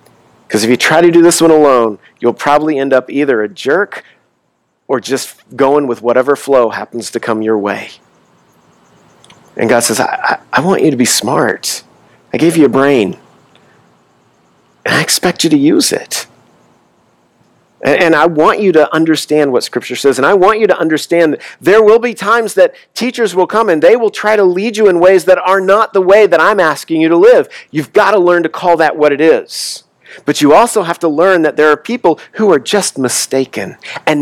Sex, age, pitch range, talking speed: male, 50-69, 125-190 Hz, 210 wpm